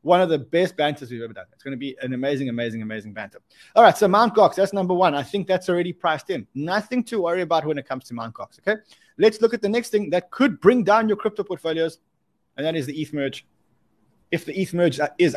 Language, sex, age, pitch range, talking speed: English, male, 20-39, 135-185 Hz, 260 wpm